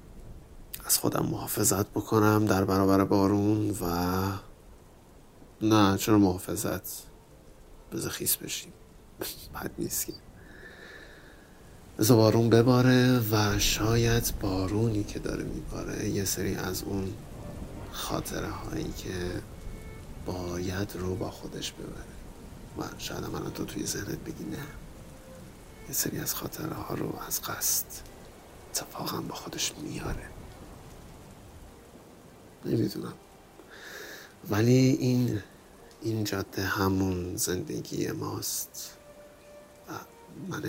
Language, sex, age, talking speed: Persian, male, 50-69, 95 wpm